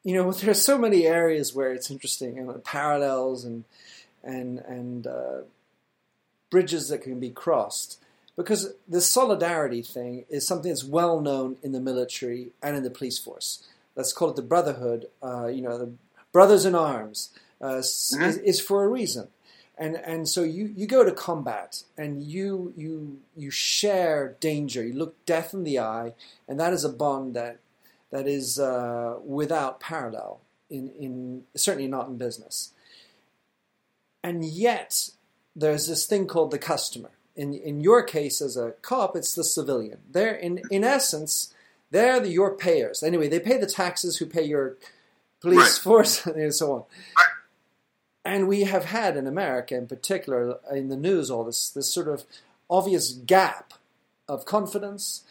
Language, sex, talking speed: English, male, 165 wpm